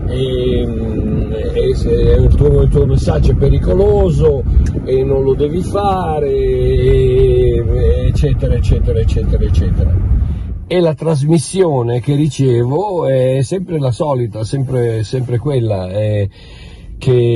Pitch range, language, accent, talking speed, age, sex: 105-140 Hz, Italian, native, 110 wpm, 50-69, male